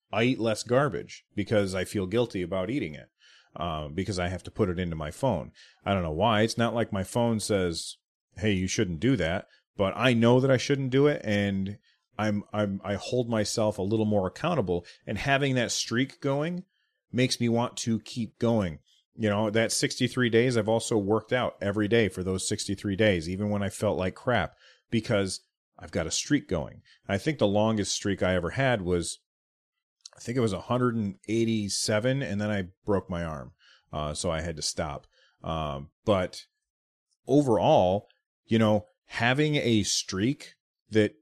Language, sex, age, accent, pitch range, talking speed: English, male, 30-49, American, 95-115 Hz, 185 wpm